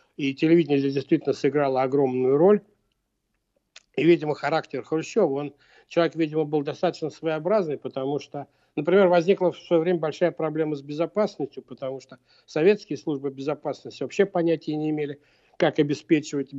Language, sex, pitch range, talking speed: Russian, male, 135-160 Hz, 140 wpm